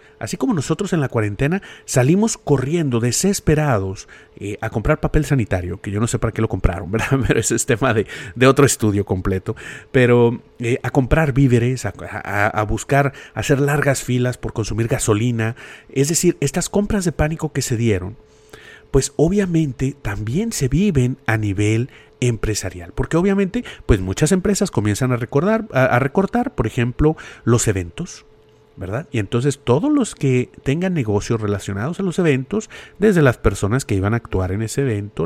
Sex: male